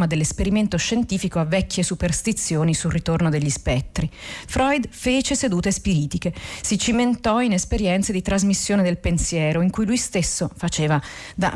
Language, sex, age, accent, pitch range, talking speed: Italian, female, 40-59, native, 160-200 Hz, 140 wpm